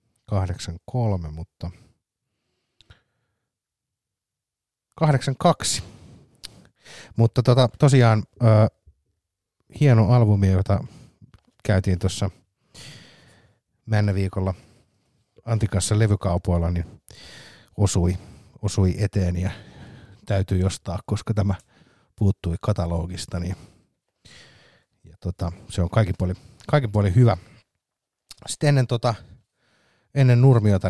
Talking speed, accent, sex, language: 75 wpm, native, male, Finnish